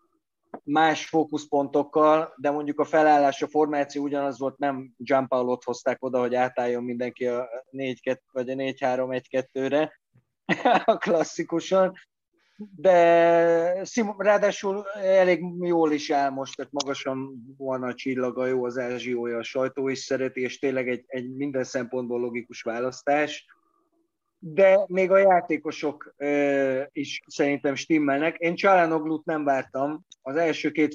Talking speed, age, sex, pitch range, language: 130 wpm, 20-39, male, 130-165 Hz, Hungarian